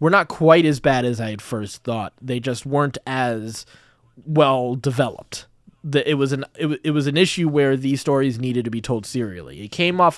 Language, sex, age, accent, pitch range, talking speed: English, male, 20-39, American, 115-145 Hz, 220 wpm